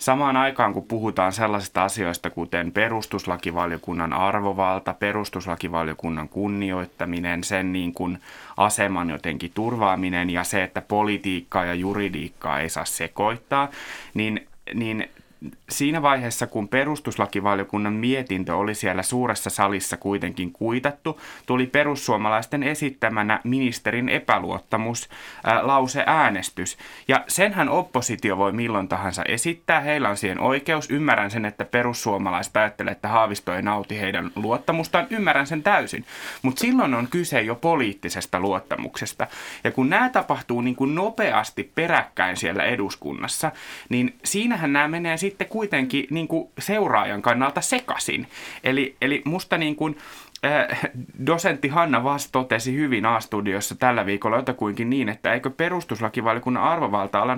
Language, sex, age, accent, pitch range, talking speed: Finnish, male, 30-49, native, 100-140 Hz, 125 wpm